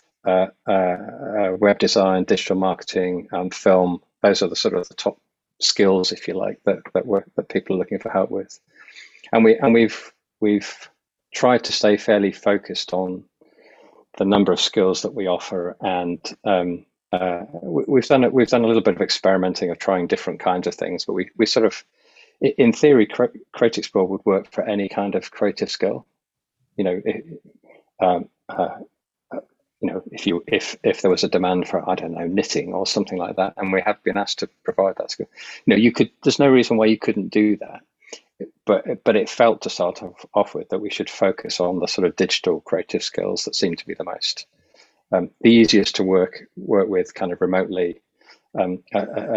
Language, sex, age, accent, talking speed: English, male, 40-59, British, 205 wpm